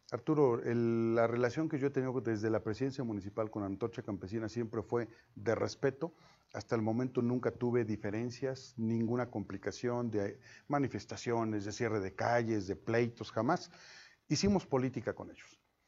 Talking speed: 145 wpm